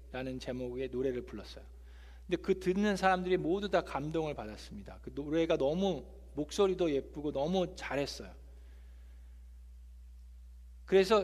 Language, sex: Korean, male